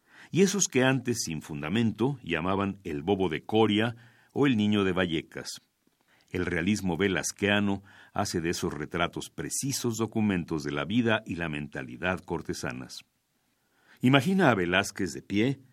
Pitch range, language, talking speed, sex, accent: 90-115 Hz, Spanish, 140 wpm, male, Mexican